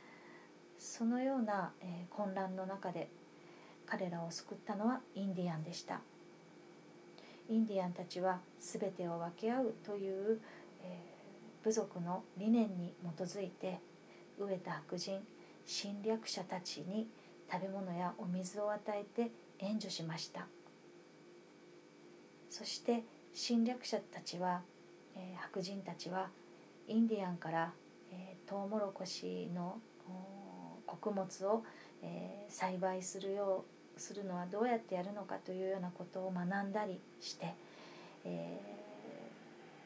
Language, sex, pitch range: Japanese, female, 180-210 Hz